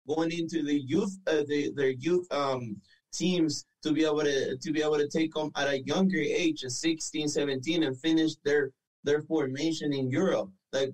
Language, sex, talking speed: English, male, 190 wpm